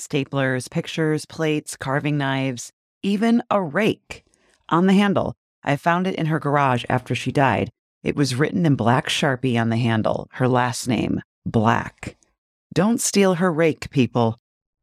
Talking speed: 155 wpm